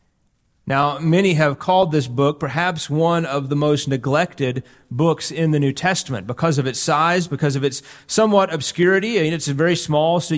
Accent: American